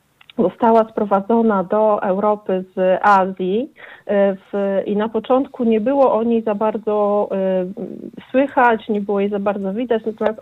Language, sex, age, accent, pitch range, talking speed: Polish, female, 40-59, native, 205-240 Hz, 140 wpm